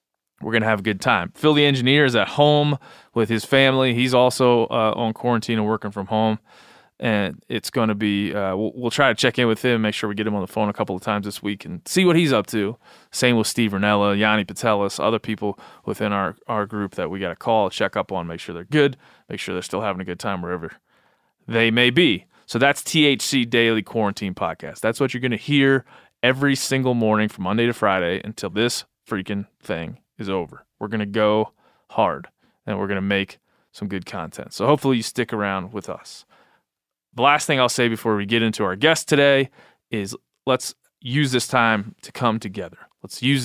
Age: 20-39